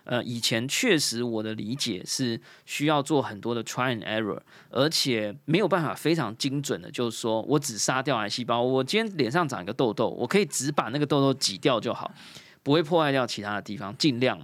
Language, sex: Chinese, male